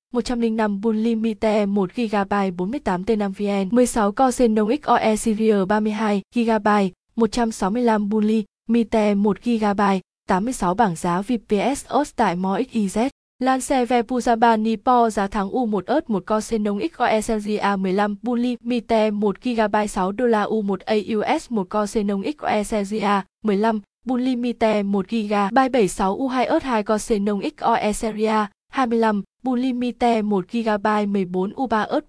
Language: Vietnamese